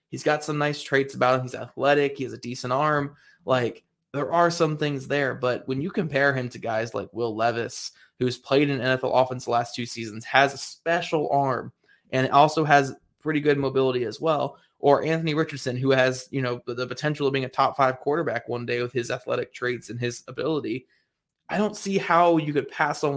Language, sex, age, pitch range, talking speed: English, male, 20-39, 120-145 Hz, 215 wpm